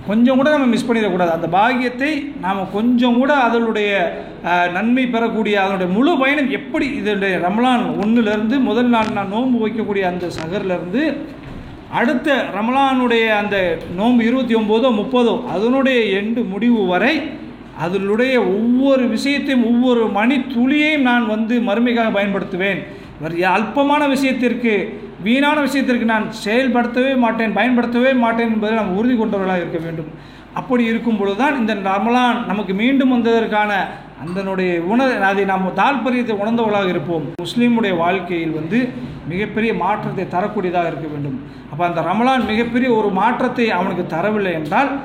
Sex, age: male, 50-69